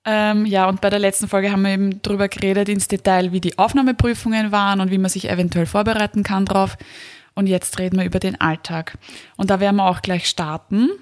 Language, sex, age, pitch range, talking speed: German, female, 20-39, 190-215 Hz, 210 wpm